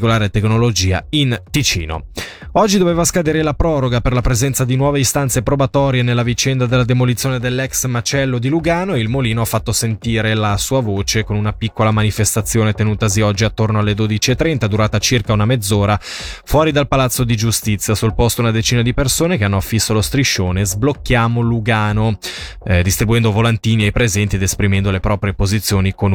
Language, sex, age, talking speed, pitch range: Italian, male, 20-39, 170 wpm, 105-125 Hz